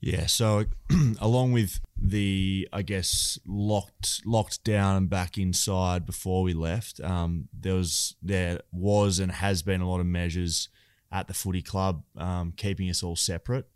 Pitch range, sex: 90-100 Hz, male